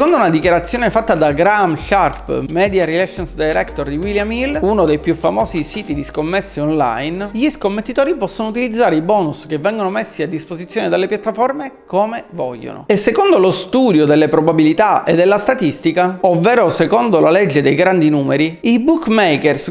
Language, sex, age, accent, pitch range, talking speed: Italian, male, 30-49, native, 160-230 Hz, 165 wpm